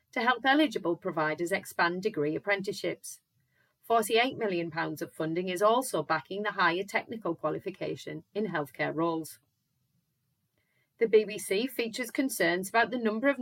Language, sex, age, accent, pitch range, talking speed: English, female, 30-49, British, 170-220 Hz, 130 wpm